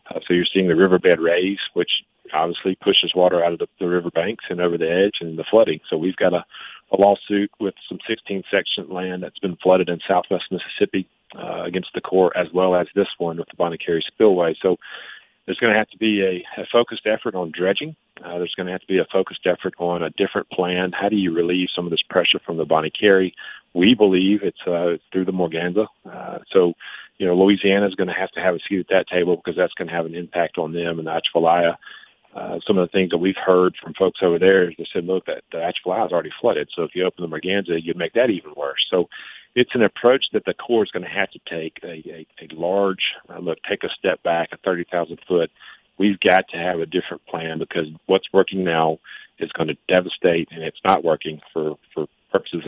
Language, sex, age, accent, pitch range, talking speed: English, male, 40-59, American, 85-95 Hz, 235 wpm